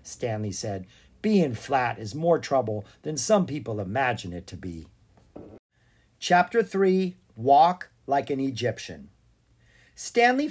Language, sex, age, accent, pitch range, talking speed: English, male, 50-69, American, 110-165 Hz, 120 wpm